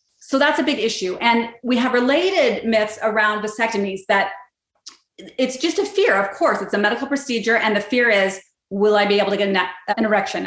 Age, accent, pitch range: 30-49, American, 205-250 Hz